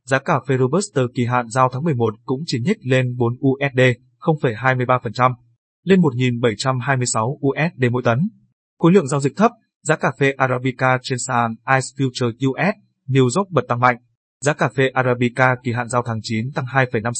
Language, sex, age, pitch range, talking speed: Vietnamese, male, 20-39, 120-135 Hz, 180 wpm